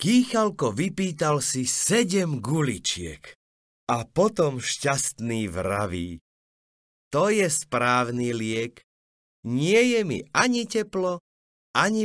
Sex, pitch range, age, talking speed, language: male, 95-150 Hz, 30-49, 95 wpm, Slovak